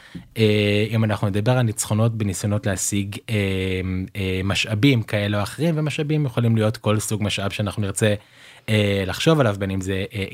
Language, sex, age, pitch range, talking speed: Hebrew, male, 20-39, 105-130 Hz, 170 wpm